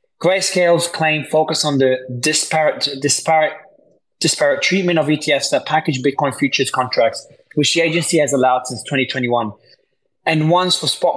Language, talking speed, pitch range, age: English, 145 wpm, 140-175 Hz, 20-39